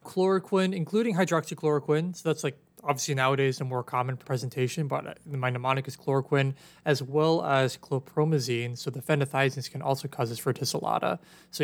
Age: 20-39